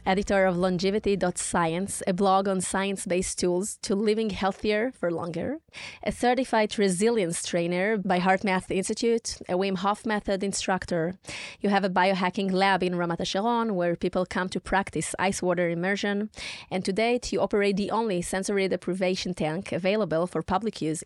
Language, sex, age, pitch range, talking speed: Hebrew, female, 20-39, 180-210 Hz, 160 wpm